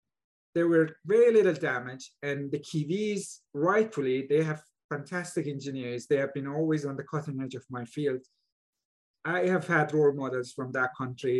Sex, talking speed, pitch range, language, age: male, 170 wpm, 130-180 Hz, English, 30-49